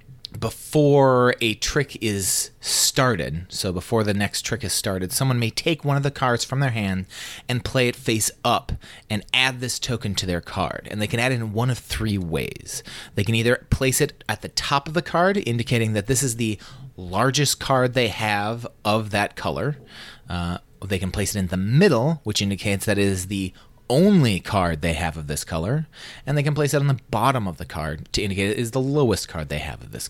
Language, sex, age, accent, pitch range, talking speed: English, male, 30-49, American, 100-130 Hz, 220 wpm